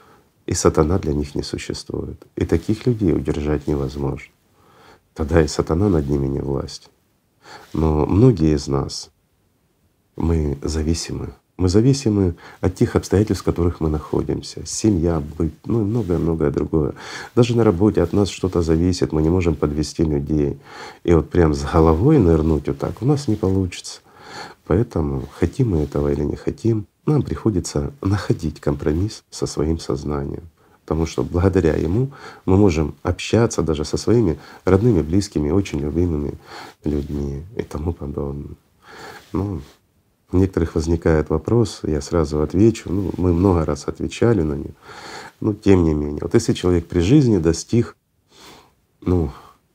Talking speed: 145 wpm